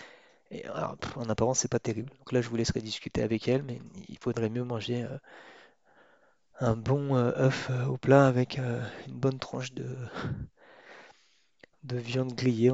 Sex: male